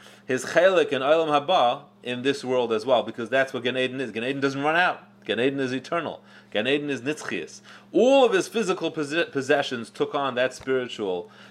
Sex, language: male, English